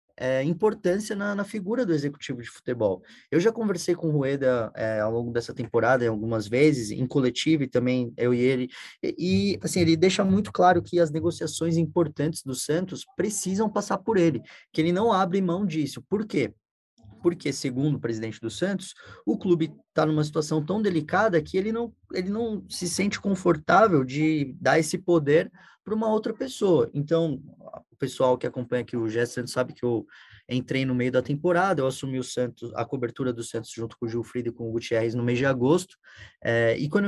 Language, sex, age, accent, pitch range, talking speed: Portuguese, male, 20-39, Brazilian, 125-185 Hz, 195 wpm